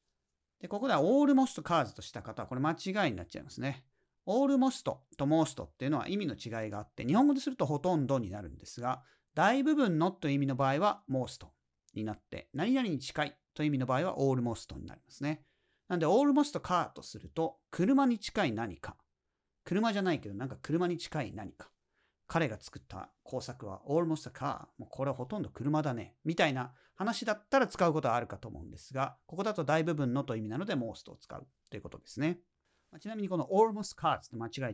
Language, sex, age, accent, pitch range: Japanese, male, 40-59, native, 120-185 Hz